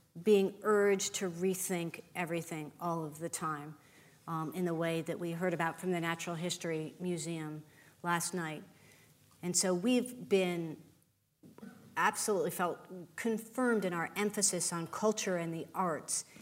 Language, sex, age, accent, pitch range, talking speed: English, female, 40-59, American, 165-205 Hz, 145 wpm